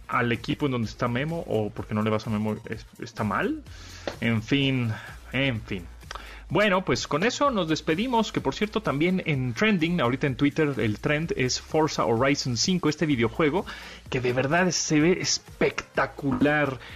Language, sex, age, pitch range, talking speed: Spanish, male, 30-49, 115-170 Hz, 175 wpm